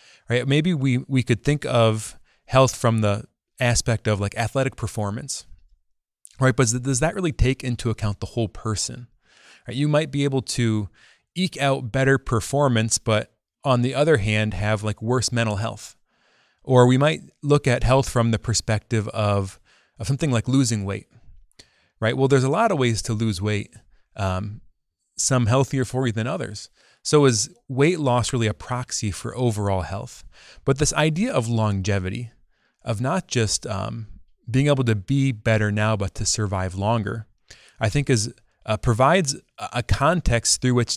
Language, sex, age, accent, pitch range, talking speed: English, male, 30-49, American, 105-135 Hz, 170 wpm